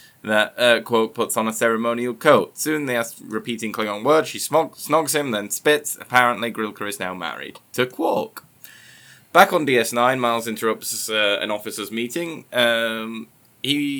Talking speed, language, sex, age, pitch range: 165 wpm, English, male, 20-39, 110-135 Hz